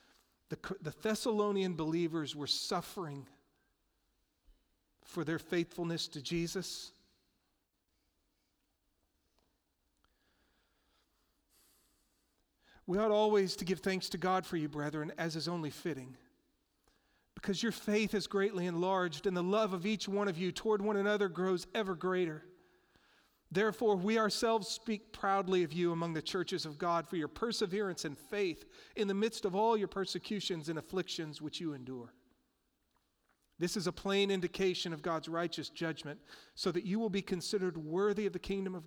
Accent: American